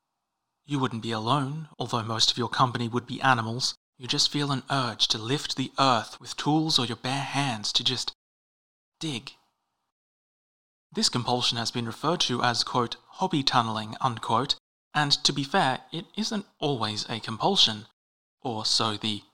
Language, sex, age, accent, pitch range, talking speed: English, male, 30-49, Australian, 115-140 Hz, 165 wpm